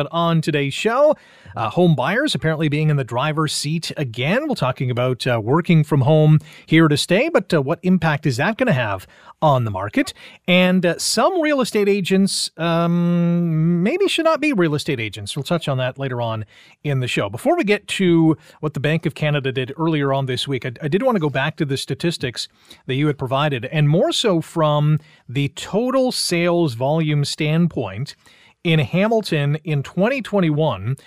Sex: male